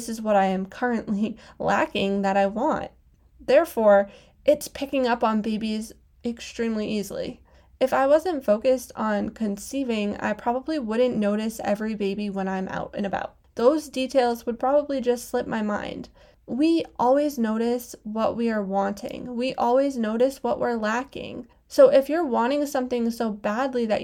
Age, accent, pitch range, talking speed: 10-29, American, 220-270 Hz, 160 wpm